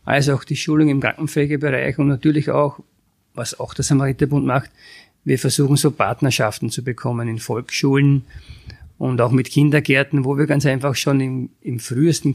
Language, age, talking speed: German, 50-69, 165 wpm